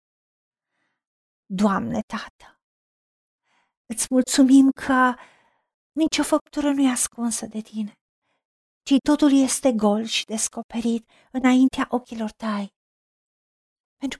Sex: female